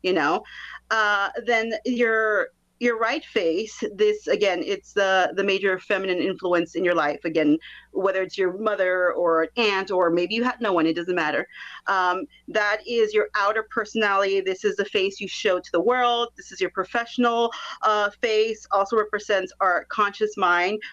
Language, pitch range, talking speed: English, 190-240 Hz, 180 wpm